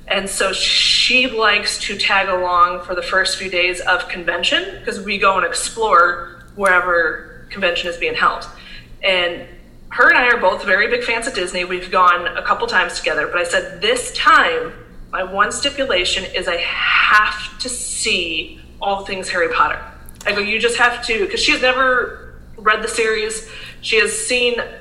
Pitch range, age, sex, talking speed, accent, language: 185-245 Hz, 20-39, female, 180 wpm, American, English